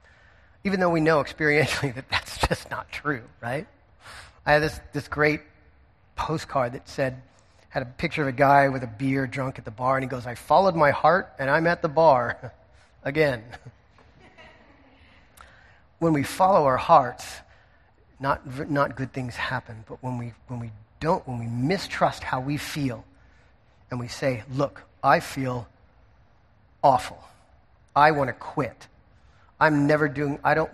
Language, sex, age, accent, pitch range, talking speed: English, male, 40-59, American, 110-145 Hz, 160 wpm